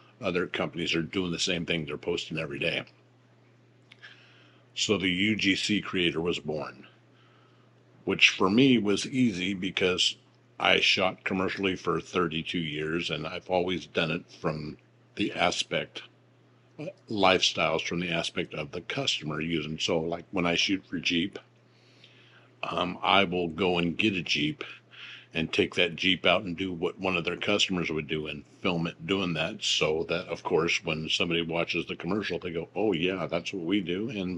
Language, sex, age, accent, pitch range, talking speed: English, male, 50-69, American, 80-95 Hz, 170 wpm